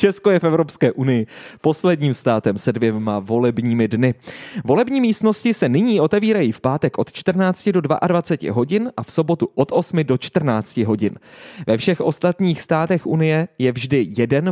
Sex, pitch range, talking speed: male, 130-175 Hz, 160 wpm